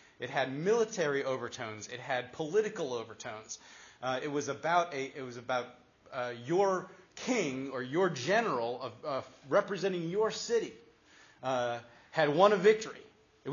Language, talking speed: English, 145 wpm